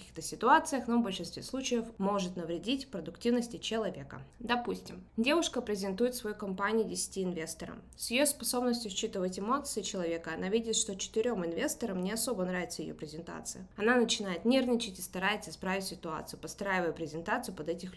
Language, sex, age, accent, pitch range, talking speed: Russian, female, 20-39, native, 185-235 Hz, 145 wpm